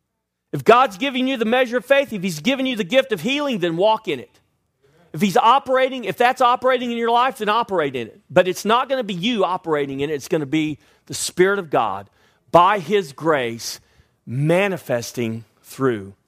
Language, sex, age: English, male, 40-59